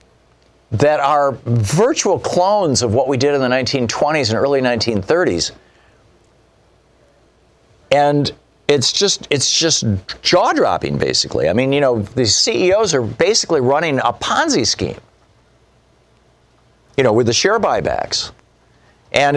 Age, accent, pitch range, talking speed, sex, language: 50-69, American, 110-140 Hz, 125 wpm, male, English